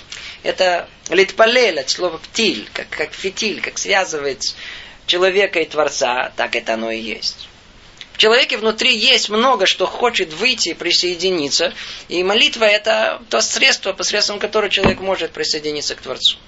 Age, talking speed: 20-39, 140 wpm